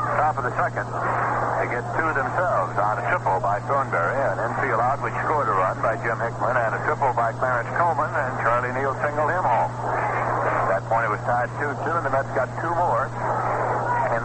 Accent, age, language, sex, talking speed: American, 60-79, English, male, 205 wpm